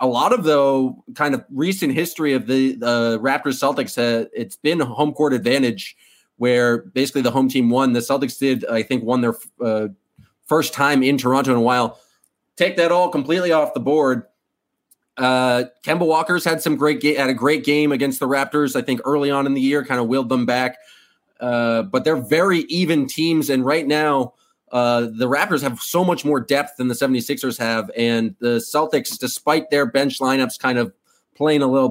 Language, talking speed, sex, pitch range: English, 200 wpm, male, 120-150 Hz